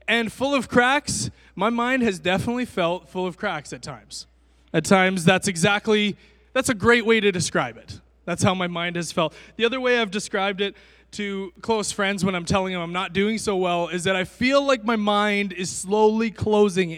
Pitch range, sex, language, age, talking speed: 175-215 Hz, male, English, 20-39, 210 wpm